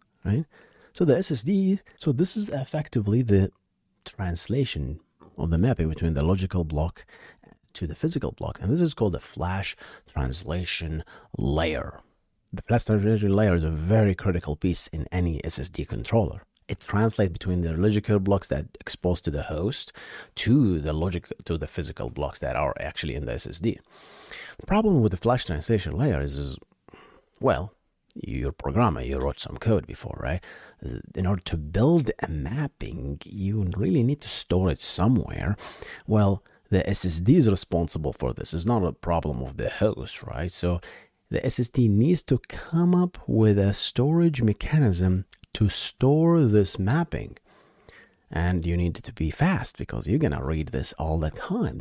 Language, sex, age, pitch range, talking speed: English, male, 30-49, 85-120 Hz, 165 wpm